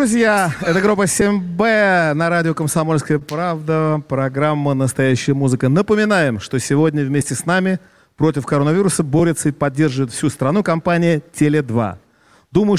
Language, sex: Russian, male